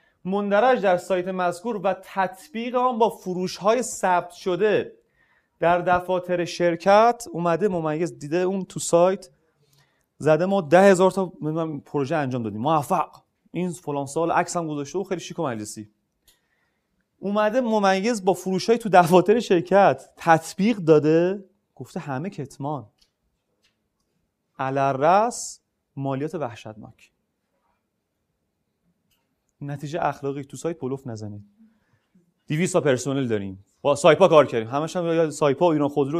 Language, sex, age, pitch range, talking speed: Persian, male, 30-49, 145-195 Hz, 125 wpm